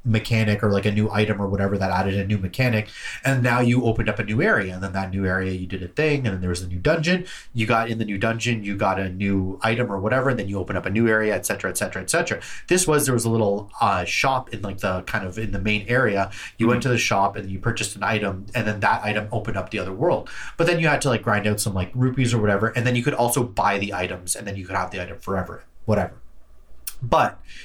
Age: 30-49